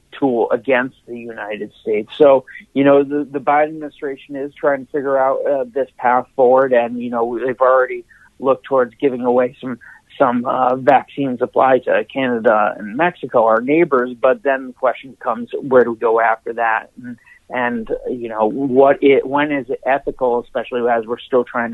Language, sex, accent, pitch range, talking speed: English, male, American, 120-140 Hz, 185 wpm